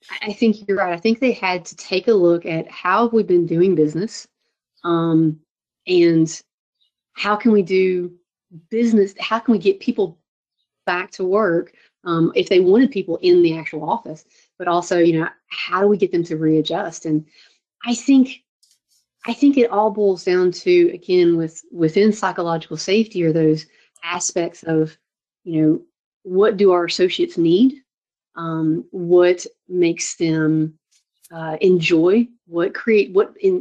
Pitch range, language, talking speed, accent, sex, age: 165-205 Hz, English, 160 wpm, American, female, 30-49